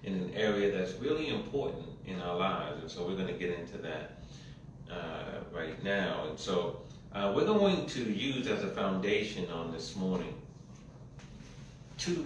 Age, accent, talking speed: 40-59, American, 165 wpm